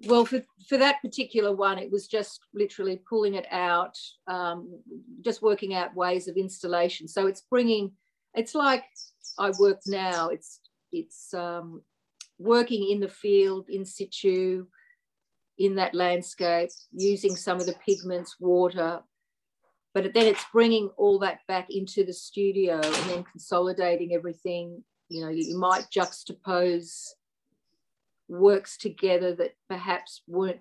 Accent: Australian